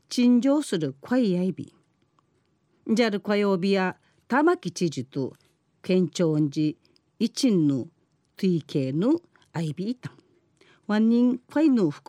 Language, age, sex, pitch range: Japanese, 40-59, female, 160-240 Hz